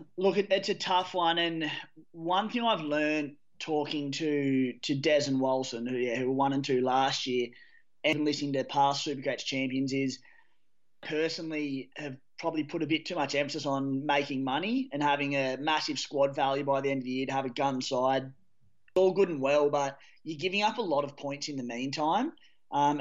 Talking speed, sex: 200 wpm, male